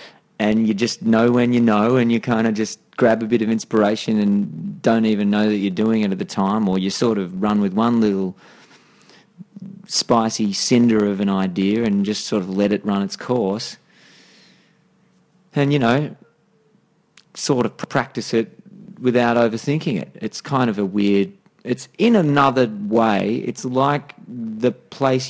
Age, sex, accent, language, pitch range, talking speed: 30-49, male, Australian, English, 105-140 Hz, 175 wpm